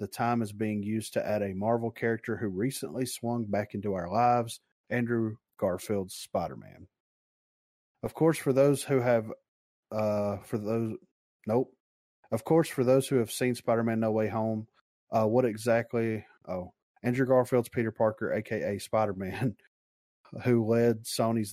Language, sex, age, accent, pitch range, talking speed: English, male, 30-49, American, 100-120 Hz, 150 wpm